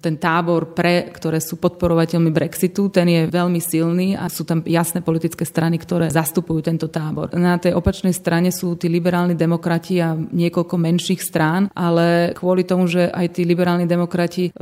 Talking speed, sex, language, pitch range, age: 170 wpm, female, Slovak, 165-180 Hz, 30-49